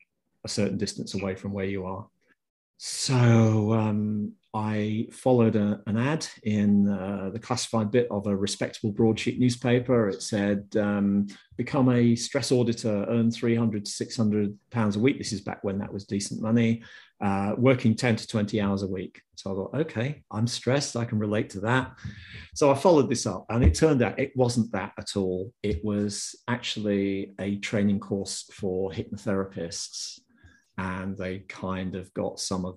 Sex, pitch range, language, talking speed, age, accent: male, 95-115 Hz, English, 170 wpm, 40-59, British